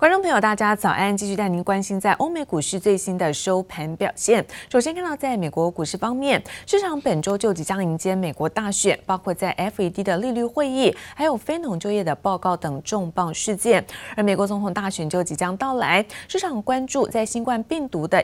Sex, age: female, 20-39